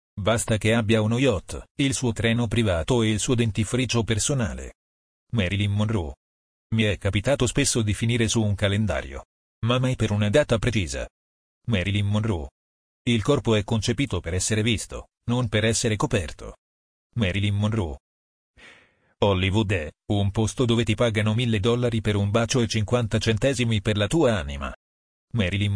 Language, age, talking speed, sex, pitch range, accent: Italian, 40-59, 155 wpm, male, 100-120 Hz, native